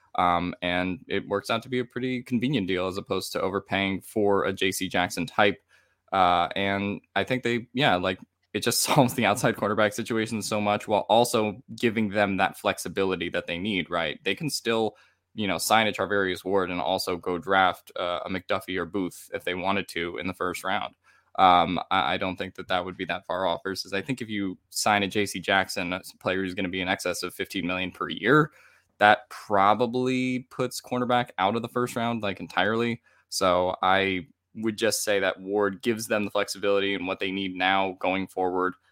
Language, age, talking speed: English, 10-29, 210 wpm